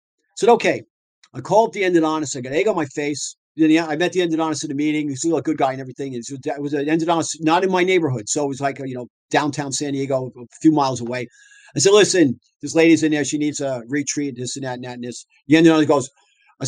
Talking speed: 265 wpm